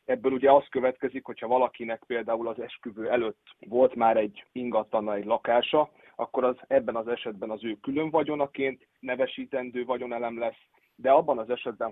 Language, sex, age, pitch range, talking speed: Hungarian, male, 30-49, 115-140 Hz, 160 wpm